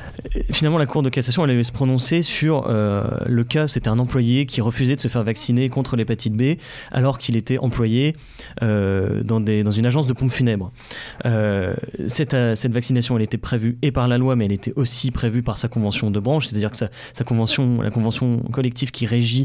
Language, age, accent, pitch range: French, 30-49, French, 115-135 Hz